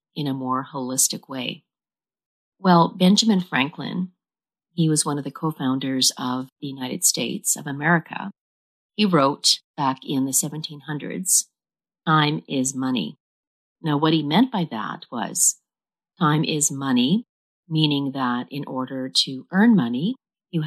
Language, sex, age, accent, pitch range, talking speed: English, female, 40-59, American, 135-190 Hz, 135 wpm